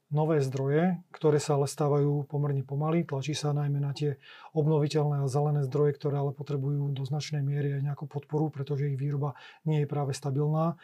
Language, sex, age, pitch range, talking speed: Slovak, male, 30-49, 140-155 Hz, 185 wpm